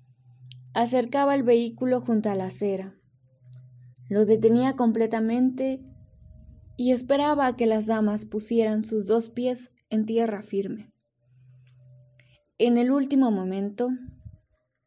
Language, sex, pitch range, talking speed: Spanish, female, 180-245 Hz, 110 wpm